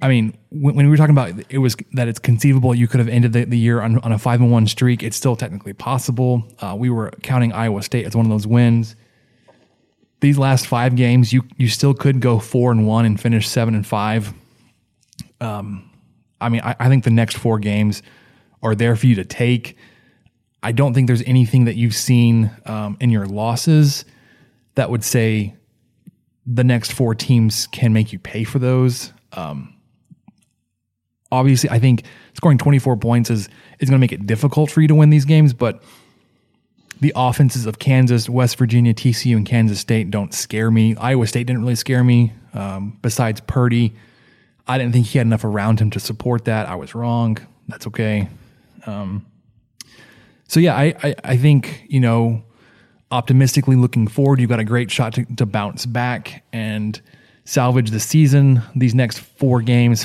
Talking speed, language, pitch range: 190 wpm, English, 110-130 Hz